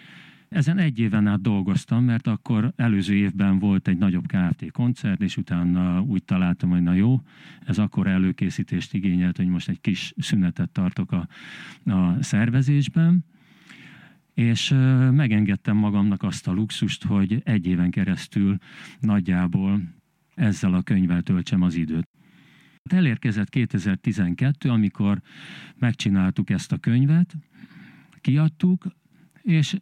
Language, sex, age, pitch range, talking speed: Hungarian, male, 50-69, 90-145 Hz, 120 wpm